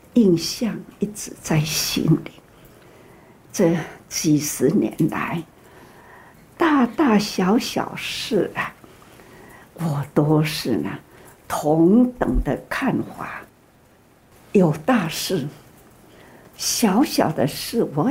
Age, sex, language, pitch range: 60-79, female, Chinese, 175-245 Hz